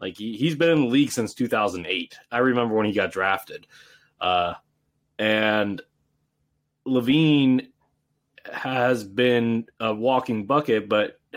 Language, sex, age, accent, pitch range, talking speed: English, male, 30-49, American, 115-160 Hz, 125 wpm